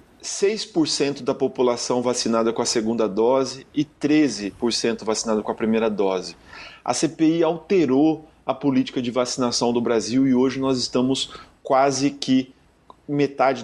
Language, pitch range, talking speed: Portuguese, 120-150 Hz, 130 wpm